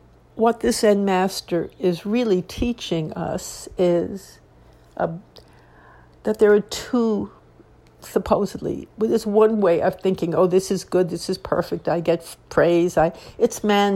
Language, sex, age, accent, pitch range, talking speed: English, female, 60-79, American, 175-205 Hz, 150 wpm